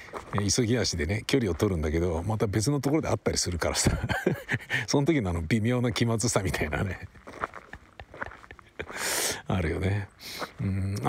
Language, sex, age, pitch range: Japanese, male, 60-79, 95-125 Hz